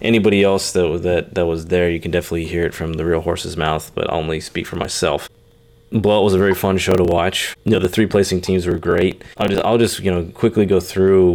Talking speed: 255 wpm